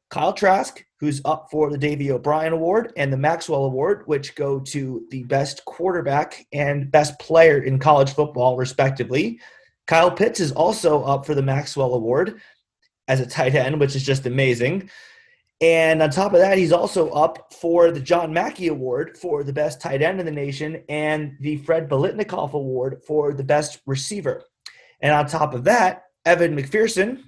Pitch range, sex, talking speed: 140-170 Hz, male, 175 wpm